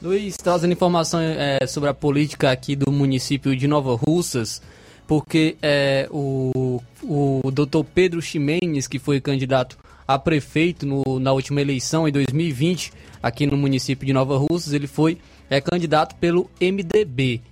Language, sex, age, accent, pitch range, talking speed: Portuguese, male, 20-39, Brazilian, 135-160 Hz, 145 wpm